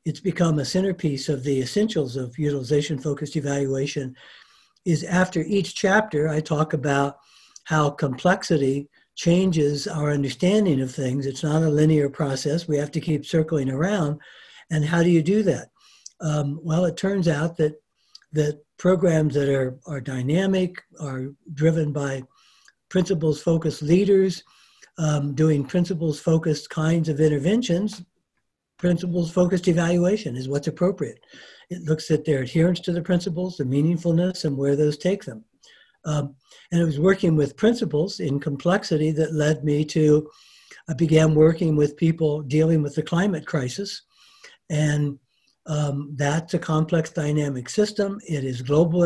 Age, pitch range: 60-79, 145-175 Hz